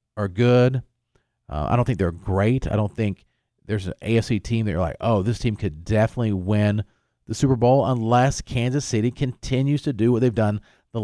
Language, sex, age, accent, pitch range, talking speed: English, male, 40-59, American, 105-130 Hz, 200 wpm